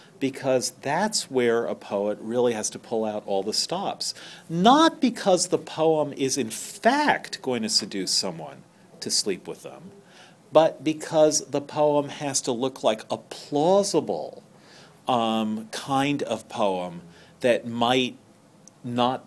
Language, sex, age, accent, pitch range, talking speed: English, male, 40-59, American, 110-165 Hz, 140 wpm